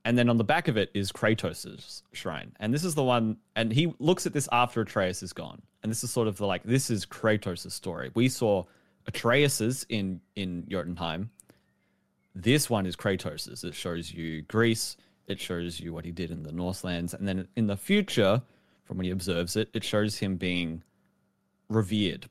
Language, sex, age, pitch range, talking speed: English, male, 20-39, 95-120 Hz, 200 wpm